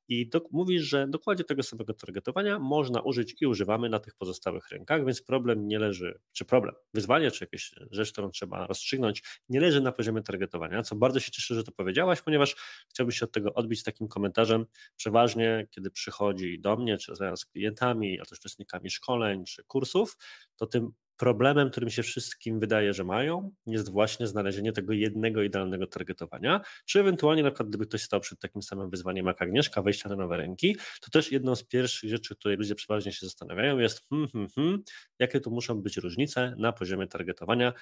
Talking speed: 180 wpm